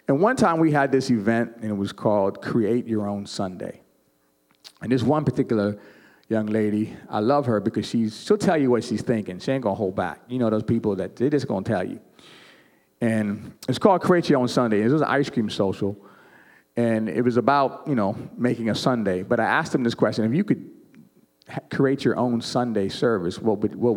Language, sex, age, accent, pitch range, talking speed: English, male, 40-59, American, 100-135 Hz, 220 wpm